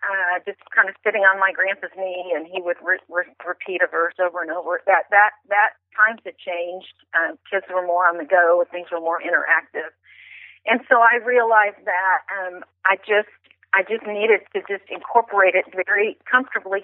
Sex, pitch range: female, 185-225 Hz